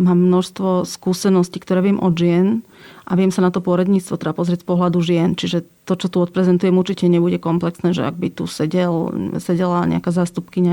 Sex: female